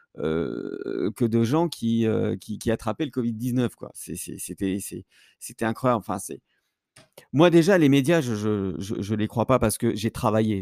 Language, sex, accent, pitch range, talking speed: French, male, French, 105-125 Hz, 205 wpm